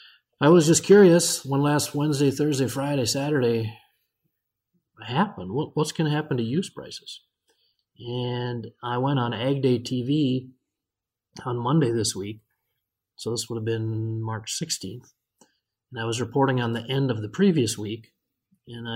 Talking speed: 150 wpm